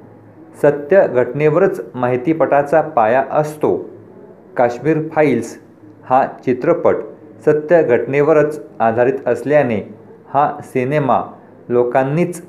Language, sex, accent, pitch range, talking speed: Marathi, male, native, 120-155 Hz, 65 wpm